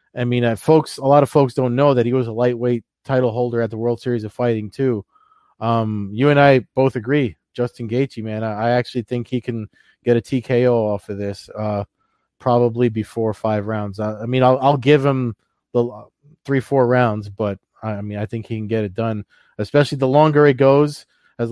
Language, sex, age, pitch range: English, male, 20-39, 115-140 Hz